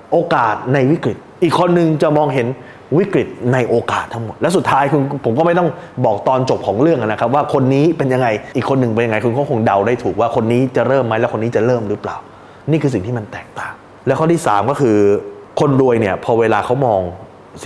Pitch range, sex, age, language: 105-145 Hz, male, 20-39, Thai